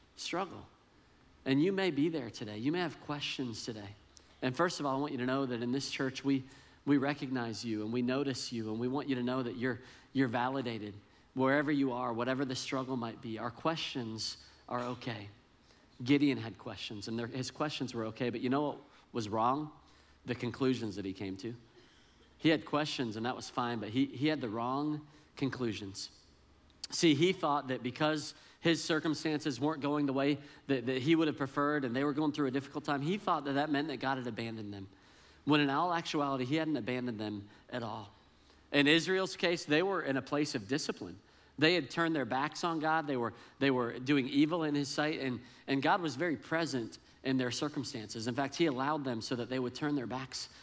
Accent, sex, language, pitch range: American, male, English, 120-150 Hz